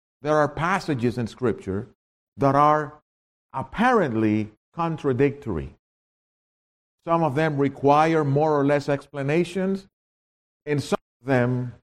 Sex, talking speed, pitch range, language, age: male, 105 wpm, 95-145 Hz, English, 50-69